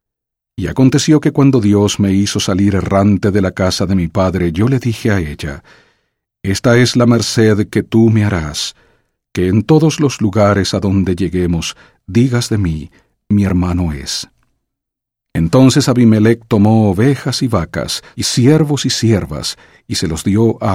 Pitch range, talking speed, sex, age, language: 95-120 Hz, 165 wpm, male, 50-69, English